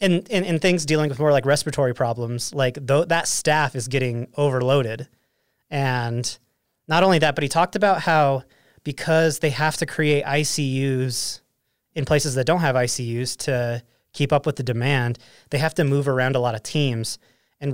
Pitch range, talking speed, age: 120-145 Hz, 175 wpm, 30-49